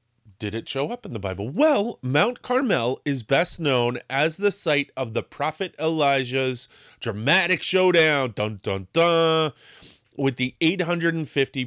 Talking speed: 145 wpm